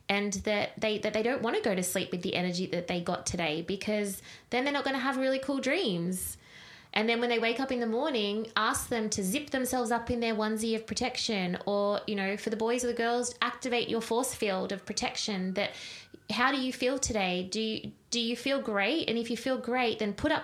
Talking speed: 245 wpm